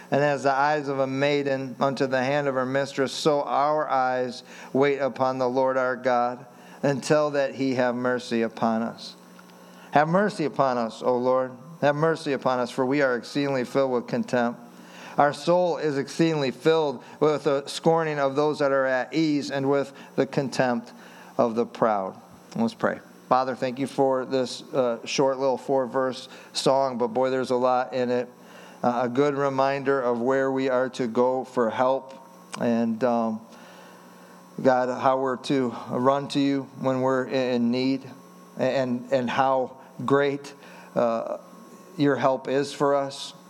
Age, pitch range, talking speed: 50-69, 120-140 Hz, 165 wpm